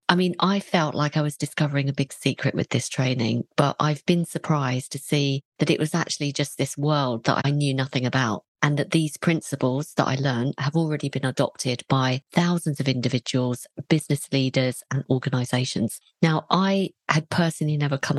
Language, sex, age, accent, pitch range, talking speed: English, female, 40-59, British, 130-160 Hz, 190 wpm